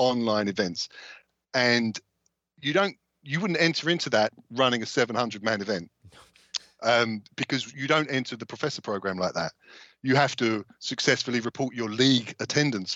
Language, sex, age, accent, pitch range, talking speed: English, male, 40-59, British, 115-135 Hz, 155 wpm